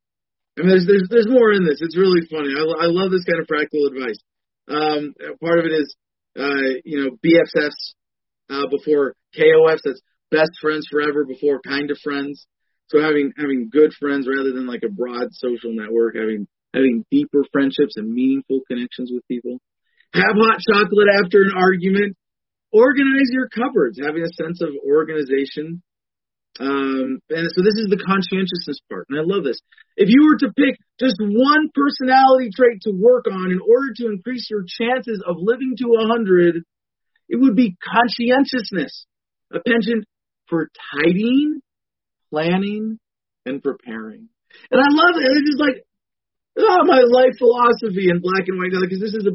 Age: 30-49